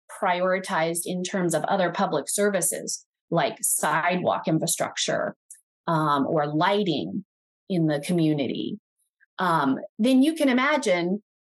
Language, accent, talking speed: English, American, 110 wpm